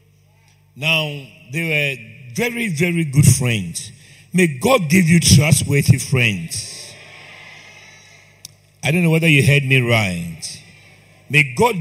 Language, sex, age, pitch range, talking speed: English, male, 50-69, 135-170 Hz, 115 wpm